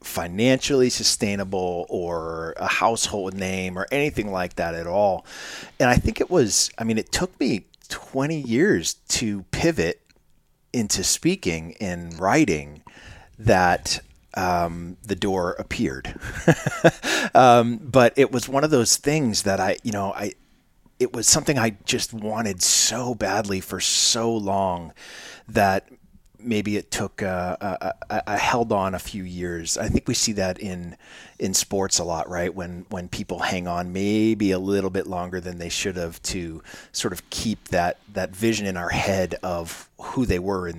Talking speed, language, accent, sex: 165 wpm, English, American, male